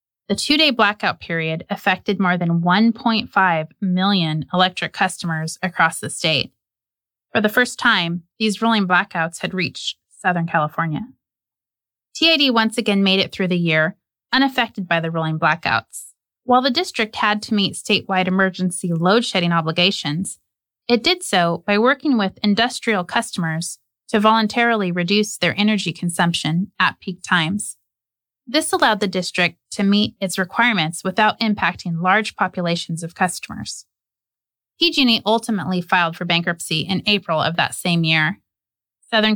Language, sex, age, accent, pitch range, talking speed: English, female, 30-49, American, 170-215 Hz, 140 wpm